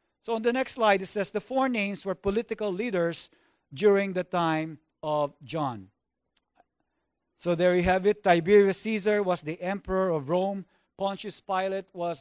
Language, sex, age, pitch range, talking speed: English, male, 50-69, 165-205 Hz, 160 wpm